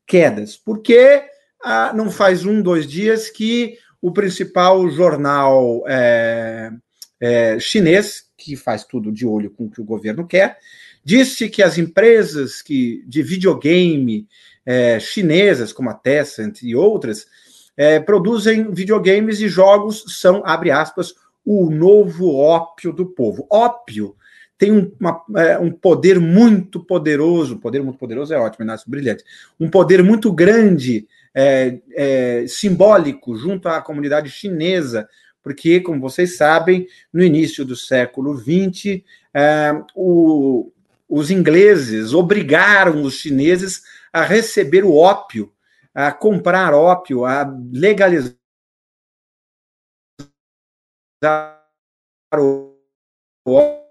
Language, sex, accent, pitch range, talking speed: Portuguese, male, Brazilian, 135-200 Hz, 110 wpm